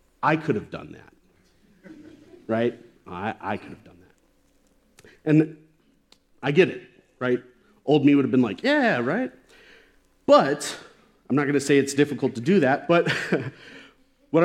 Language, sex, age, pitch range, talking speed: English, male, 40-59, 115-155 Hz, 160 wpm